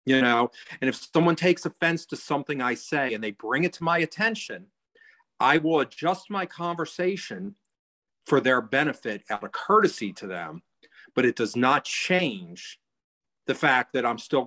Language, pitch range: English, 120-180 Hz